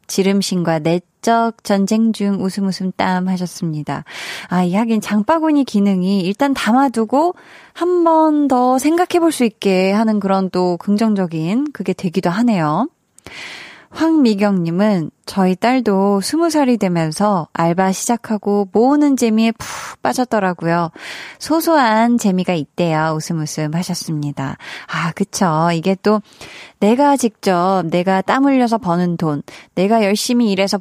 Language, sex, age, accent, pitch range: Korean, female, 20-39, native, 180-240 Hz